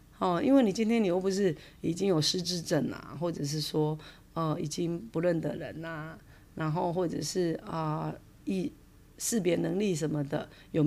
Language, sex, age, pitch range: Chinese, female, 30-49, 155-190 Hz